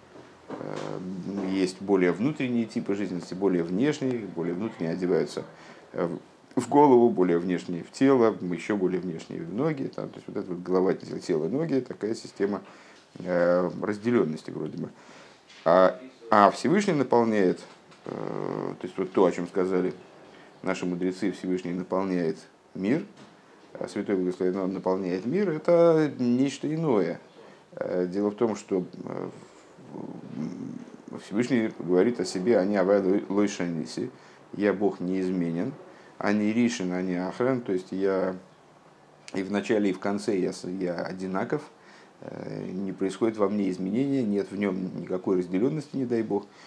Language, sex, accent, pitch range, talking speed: Russian, male, native, 90-115 Hz, 130 wpm